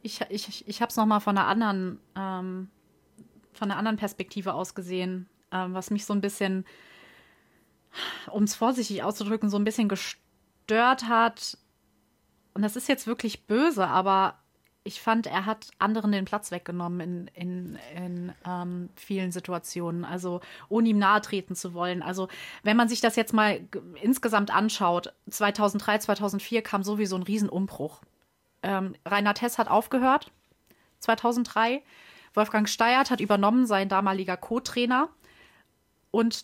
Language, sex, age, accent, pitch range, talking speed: German, female, 30-49, German, 195-225 Hz, 150 wpm